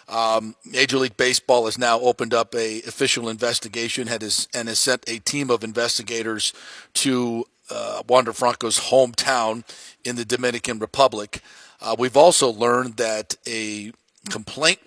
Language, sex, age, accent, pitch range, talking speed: English, male, 40-59, American, 110-125 Hz, 135 wpm